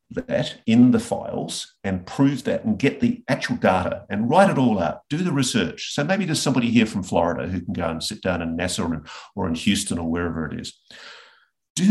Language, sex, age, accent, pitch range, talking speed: English, male, 50-69, Australian, 90-150 Hz, 220 wpm